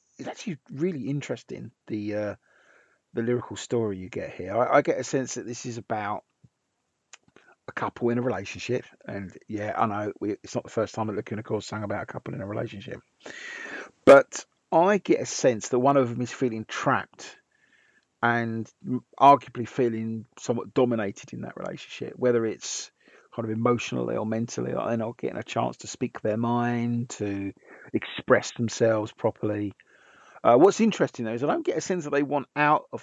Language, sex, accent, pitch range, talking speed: English, male, British, 110-135 Hz, 190 wpm